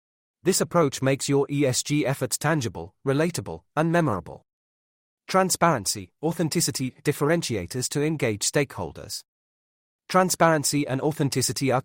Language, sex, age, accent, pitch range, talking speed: English, male, 30-49, British, 110-155 Hz, 100 wpm